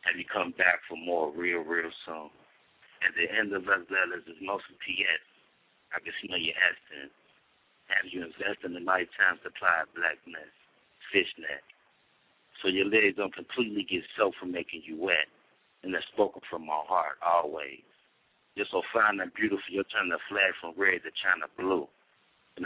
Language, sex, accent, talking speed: English, male, American, 185 wpm